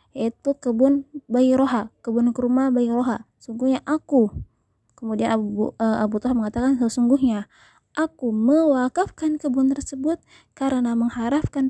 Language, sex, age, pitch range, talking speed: Indonesian, female, 20-39, 235-275 Hz, 115 wpm